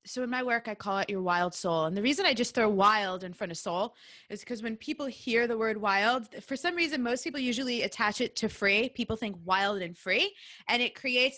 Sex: female